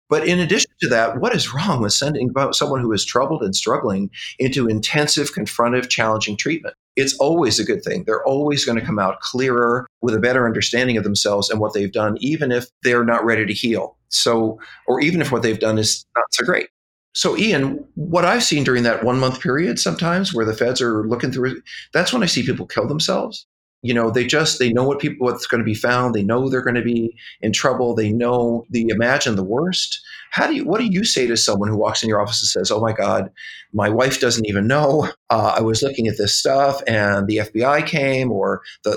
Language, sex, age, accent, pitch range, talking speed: English, male, 40-59, American, 110-140 Hz, 230 wpm